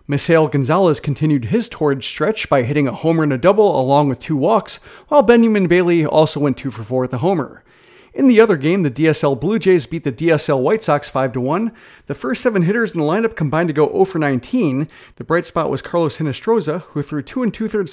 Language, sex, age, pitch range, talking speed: English, male, 30-49, 140-190 Hz, 210 wpm